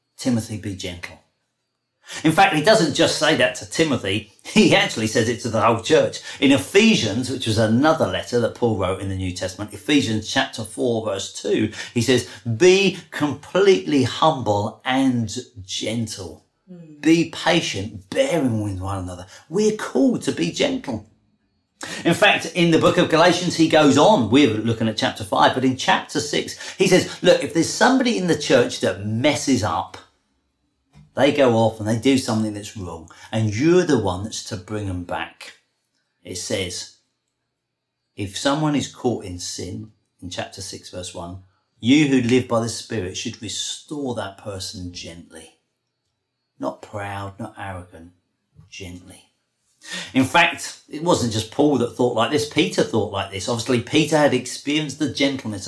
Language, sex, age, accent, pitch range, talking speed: English, male, 40-59, British, 100-150 Hz, 165 wpm